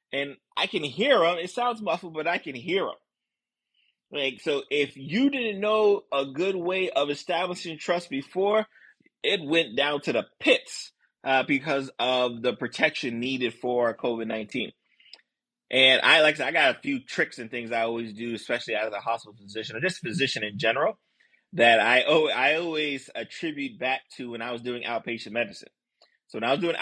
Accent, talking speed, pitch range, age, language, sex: American, 190 wpm, 125-165 Hz, 30-49, English, male